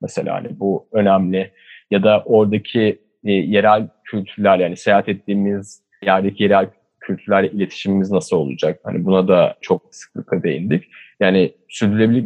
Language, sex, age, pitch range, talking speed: Turkish, male, 30-49, 105-125 Hz, 130 wpm